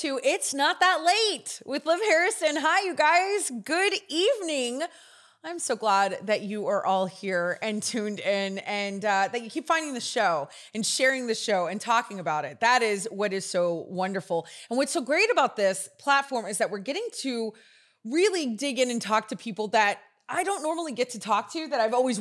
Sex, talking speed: female, 205 wpm